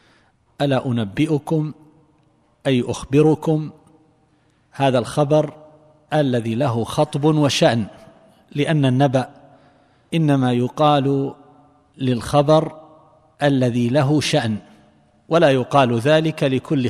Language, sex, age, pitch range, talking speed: Arabic, male, 50-69, 135-160 Hz, 80 wpm